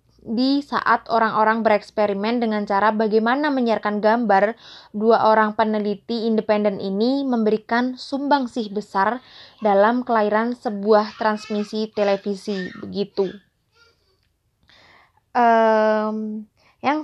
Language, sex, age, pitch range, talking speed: Indonesian, female, 20-39, 210-235 Hz, 85 wpm